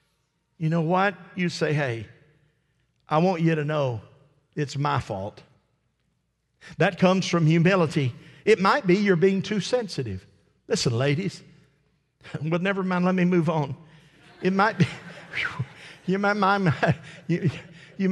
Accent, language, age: American, English, 50-69